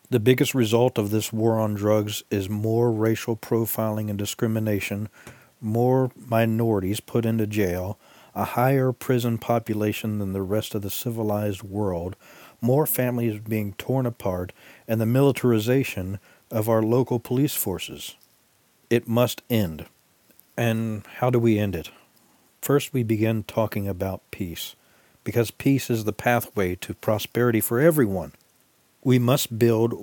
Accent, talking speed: American, 140 wpm